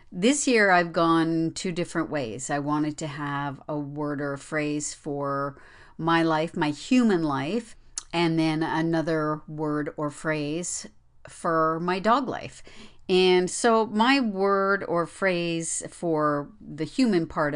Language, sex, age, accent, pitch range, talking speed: English, female, 50-69, American, 150-175 Hz, 140 wpm